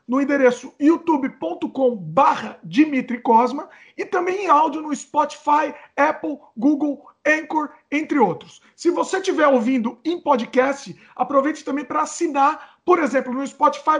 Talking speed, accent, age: 130 wpm, Brazilian, 40-59